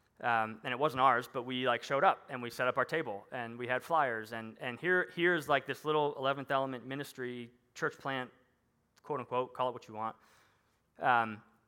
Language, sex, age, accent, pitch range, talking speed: English, male, 20-39, American, 115-140 Hz, 205 wpm